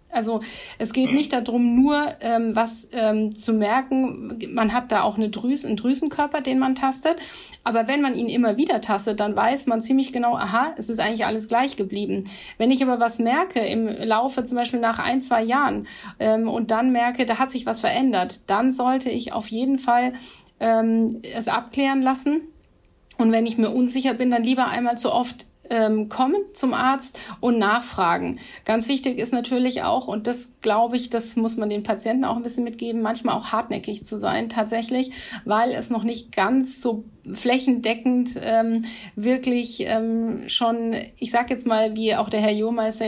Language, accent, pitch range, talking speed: German, German, 225-250 Hz, 185 wpm